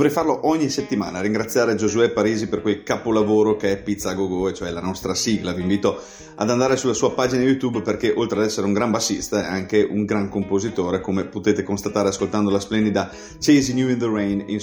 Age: 30-49